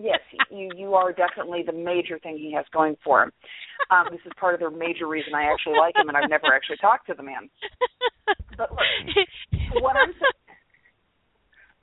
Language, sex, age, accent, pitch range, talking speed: English, female, 40-59, American, 155-220 Hz, 180 wpm